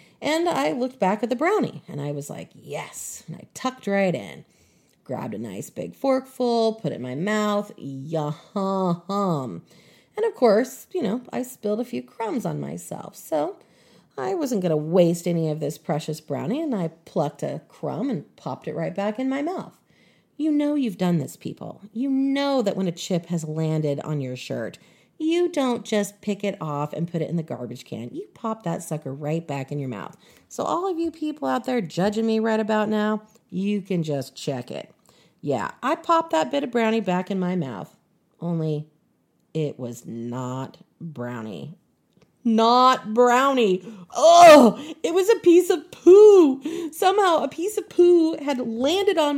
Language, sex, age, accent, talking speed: English, female, 30-49, American, 185 wpm